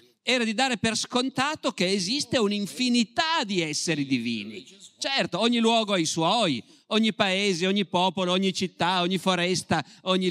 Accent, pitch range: native, 165-200 Hz